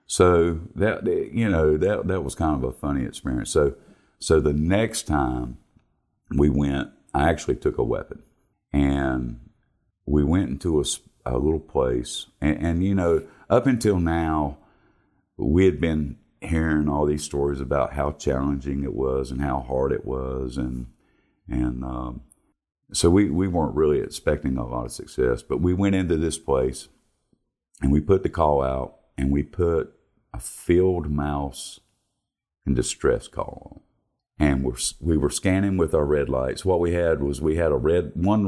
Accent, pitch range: American, 70-85 Hz